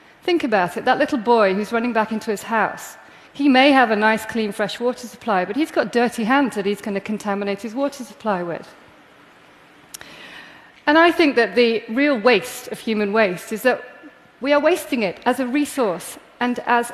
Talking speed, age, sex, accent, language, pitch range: 200 wpm, 40-59, female, British, English, 220-275 Hz